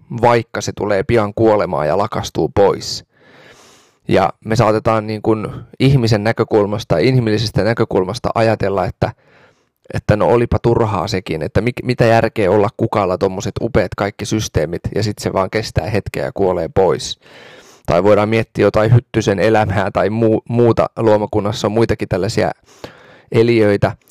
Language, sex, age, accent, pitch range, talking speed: Finnish, male, 20-39, native, 105-120 Hz, 140 wpm